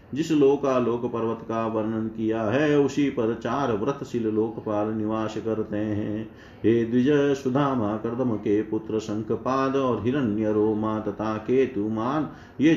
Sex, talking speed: male, 130 wpm